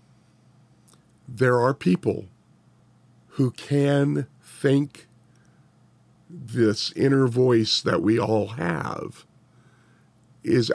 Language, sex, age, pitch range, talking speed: English, male, 50-69, 110-130 Hz, 80 wpm